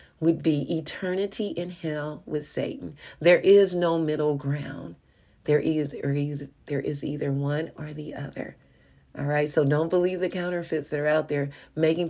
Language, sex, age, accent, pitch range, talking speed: English, female, 40-59, American, 145-175 Hz, 175 wpm